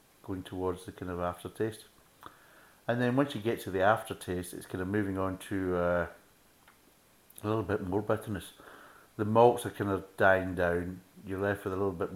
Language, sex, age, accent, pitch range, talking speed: English, male, 60-79, British, 90-105 Hz, 190 wpm